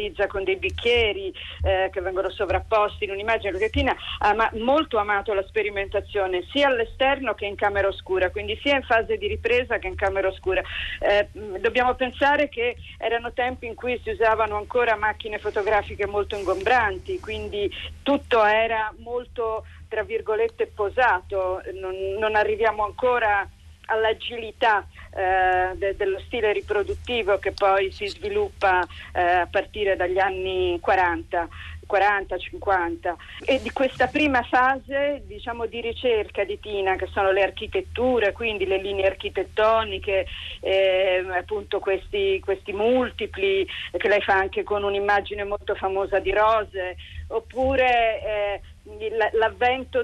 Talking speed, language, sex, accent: 135 wpm, Italian, female, native